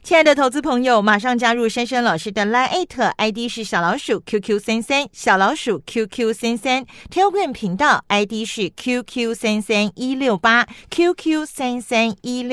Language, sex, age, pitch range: Chinese, female, 40-59, 220-300 Hz